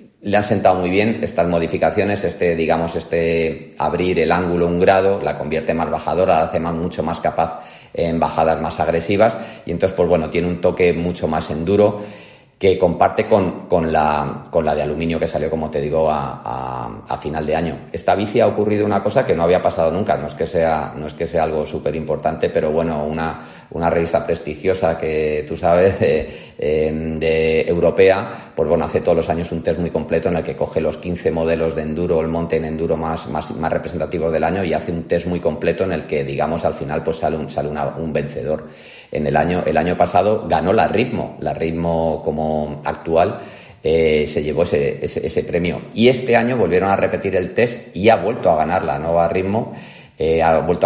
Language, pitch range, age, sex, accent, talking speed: Spanish, 75-90 Hz, 30-49, male, Spanish, 215 wpm